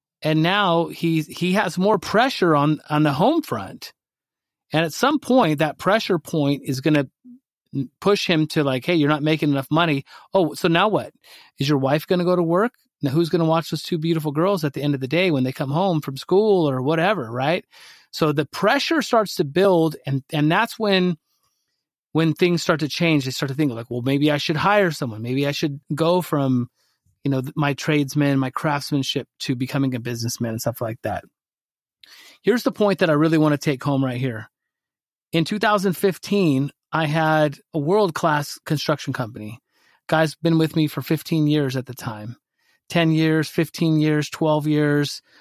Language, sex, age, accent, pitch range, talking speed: English, male, 30-49, American, 140-175 Hz, 200 wpm